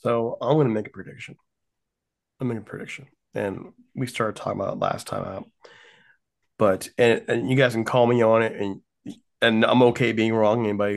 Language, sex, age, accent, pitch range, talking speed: English, male, 20-39, American, 95-115 Hz, 195 wpm